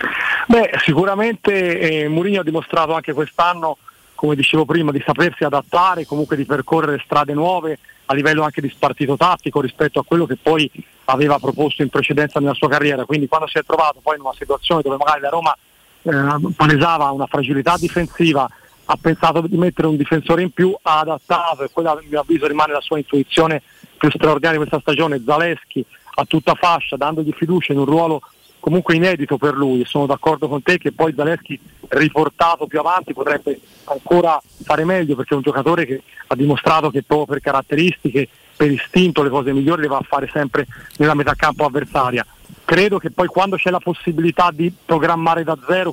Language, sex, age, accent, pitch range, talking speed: Italian, male, 40-59, native, 145-165 Hz, 185 wpm